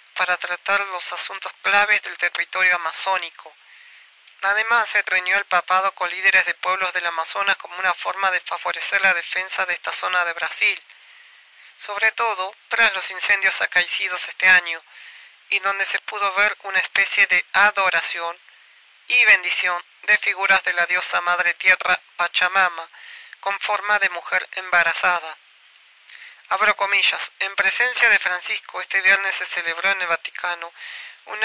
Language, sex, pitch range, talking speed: Spanish, male, 180-205 Hz, 145 wpm